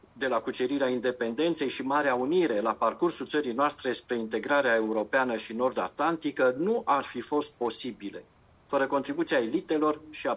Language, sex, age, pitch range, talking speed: English, male, 40-59, 120-150 Hz, 150 wpm